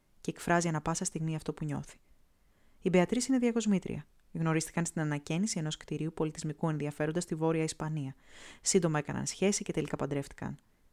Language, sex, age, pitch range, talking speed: Greek, female, 20-39, 155-190 Hz, 155 wpm